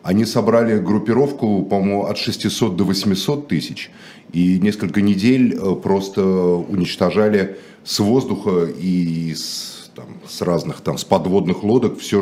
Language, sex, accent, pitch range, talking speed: Russian, male, native, 95-115 Hz, 130 wpm